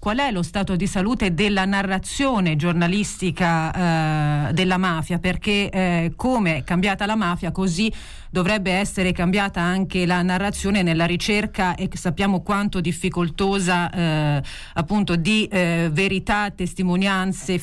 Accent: native